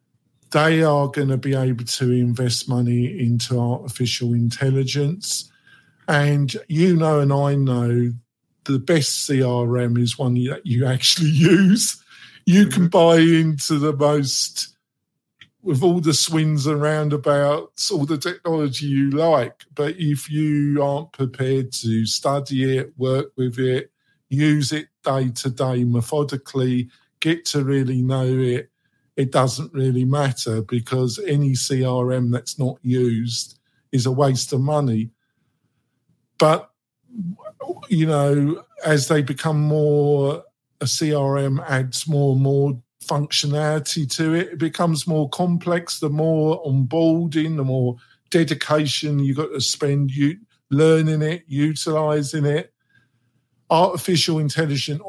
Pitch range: 130-155 Hz